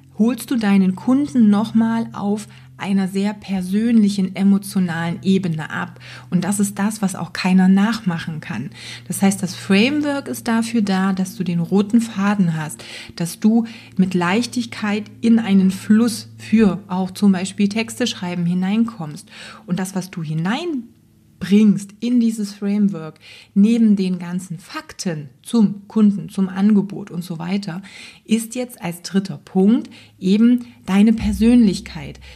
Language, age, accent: German, 30-49, German